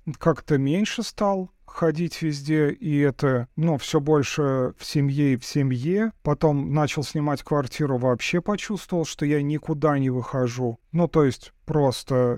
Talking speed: 150 wpm